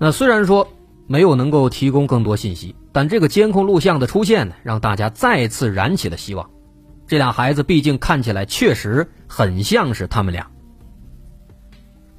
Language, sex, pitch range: Chinese, male, 105-155 Hz